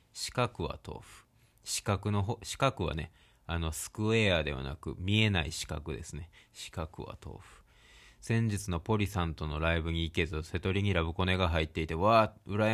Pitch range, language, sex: 85-115 Hz, Japanese, male